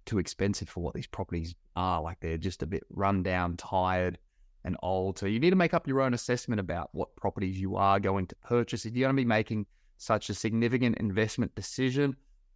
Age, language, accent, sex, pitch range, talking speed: 20-39, English, Australian, male, 95-120 Hz, 215 wpm